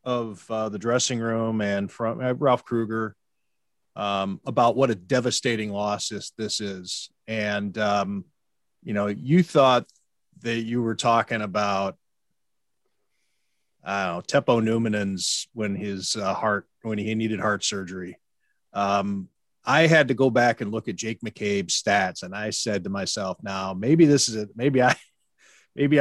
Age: 40-59